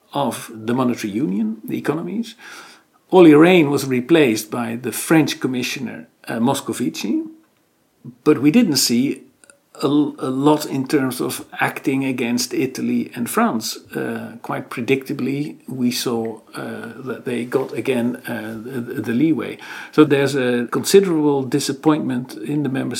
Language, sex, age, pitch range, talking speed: English, male, 50-69, 115-145 Hz, 140 wpm